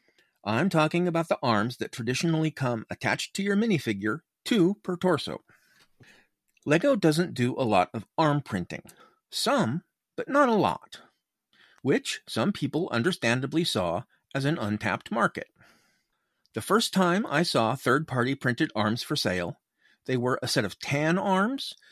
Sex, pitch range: male, 115-165 Hz